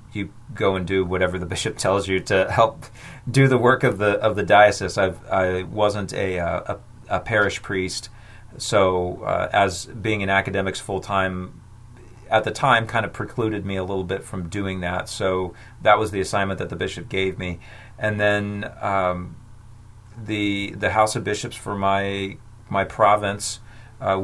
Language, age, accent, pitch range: English, 40-59, American, 95-110 Hz